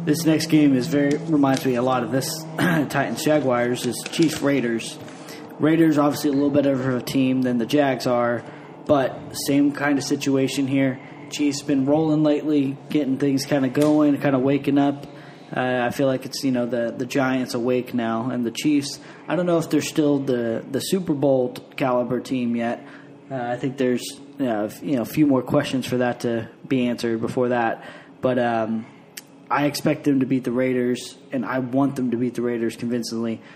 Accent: American